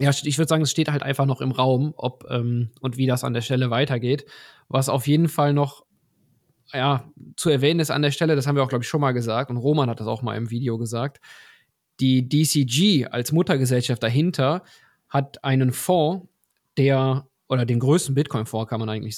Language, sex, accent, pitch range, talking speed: German, male, German, 125-145 Hz, 205 wpm